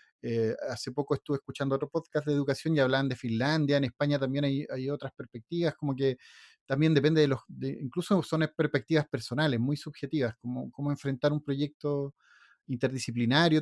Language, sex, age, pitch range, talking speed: Spanish, male, 30-49, 135-170 Hz, 165 wpm